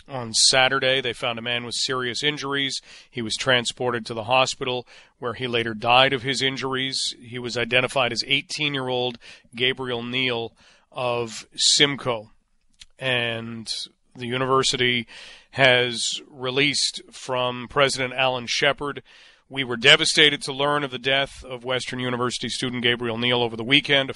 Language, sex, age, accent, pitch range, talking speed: English, male, 40-59, American, 120-140 Hz, 145 wpm